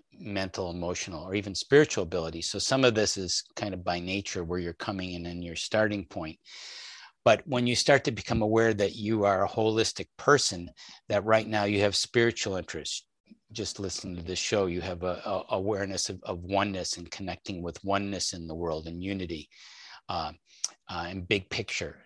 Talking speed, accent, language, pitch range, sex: 190 wpm, American, English, 90-110 Hz, male